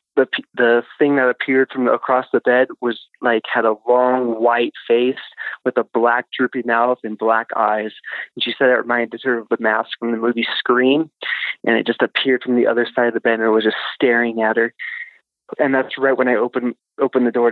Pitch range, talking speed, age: 120-140 Hz, 220 wpm, 20-39